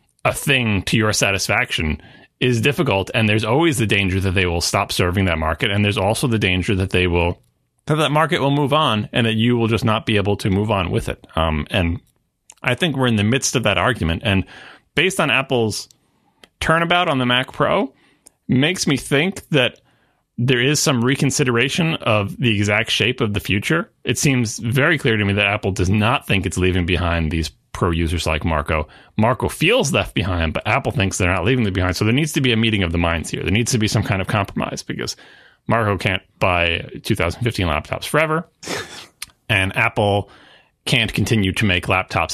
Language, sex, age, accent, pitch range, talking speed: English, male, 30-49, American, 95-130 Hz, 205 wpm